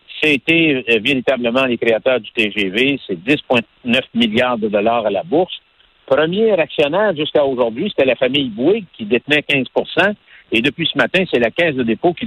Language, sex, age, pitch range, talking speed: French, male, 60-79, 115-160 Hz, 170 wpm